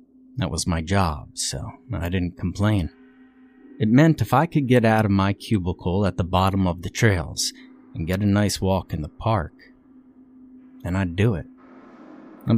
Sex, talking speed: male, 175 wpm